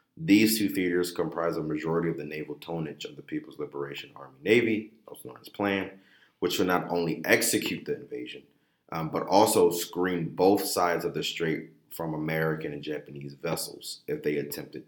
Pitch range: 80-90 Hz